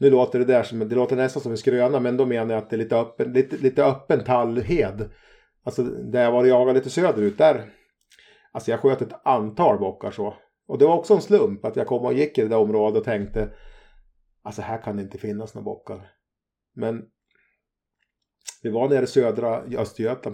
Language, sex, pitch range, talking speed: Swedish, male, 110-130 Hz, 205 wpm